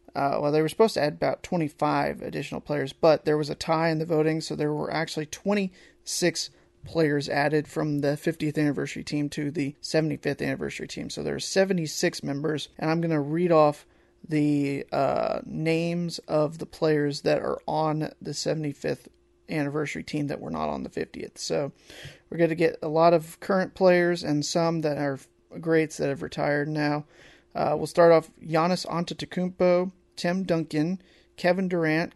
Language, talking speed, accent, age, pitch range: English, 175 wpm, American, 30-49, 150-175 Hz